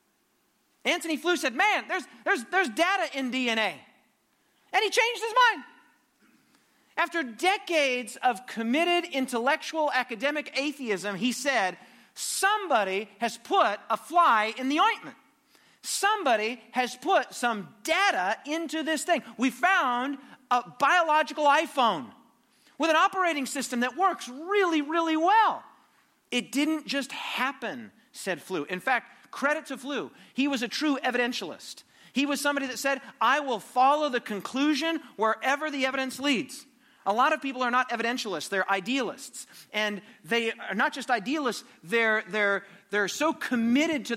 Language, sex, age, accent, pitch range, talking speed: English, male, 40-59, American, 230-315 Hz, 140 wpm